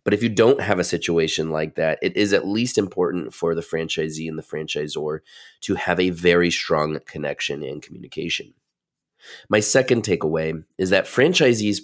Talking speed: 170 wpm